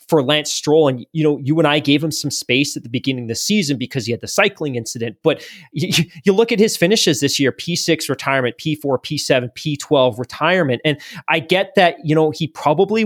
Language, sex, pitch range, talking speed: English, male, 140-175 Hz, 220 wpm